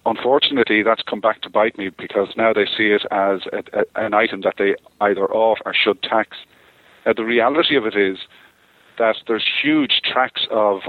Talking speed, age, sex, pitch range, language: 195 wpm, 40-59, male, 100-115 Hz, English